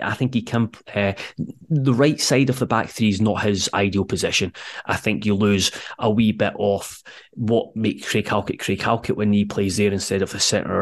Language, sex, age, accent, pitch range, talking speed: English, male, 20-39, British, 100-120 Hz, 215 wpm